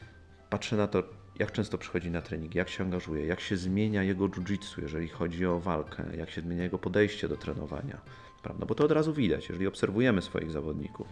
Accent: native